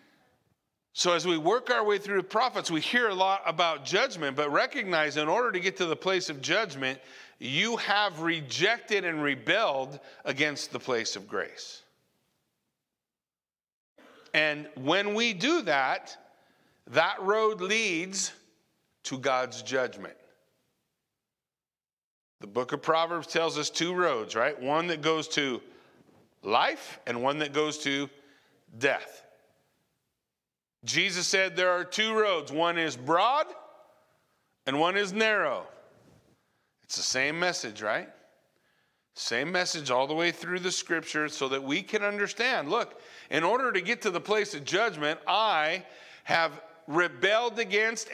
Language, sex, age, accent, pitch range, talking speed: English, male, 40-59, American, 150-195 Hz, 140 wpm